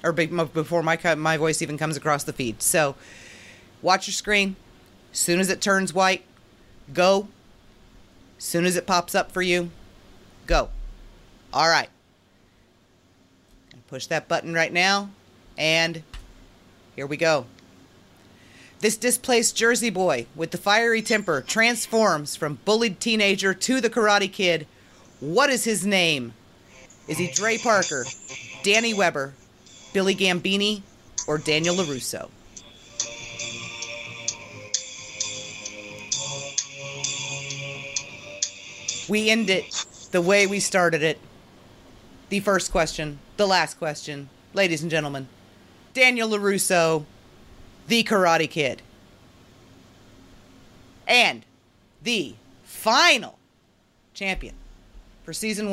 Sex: female